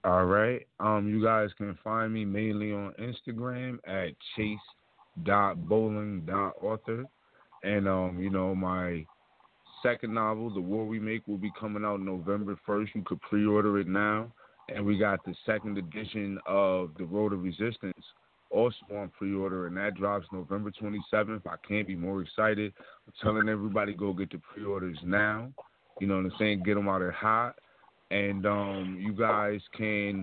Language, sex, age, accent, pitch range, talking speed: English, male, 30-49, American, 95-110 Hz, 170 wpm